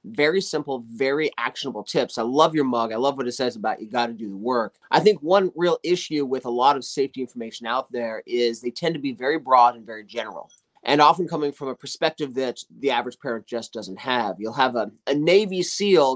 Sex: male